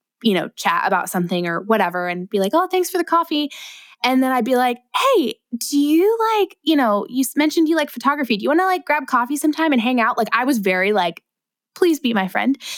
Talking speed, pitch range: 240 wpm, 190-250 Hz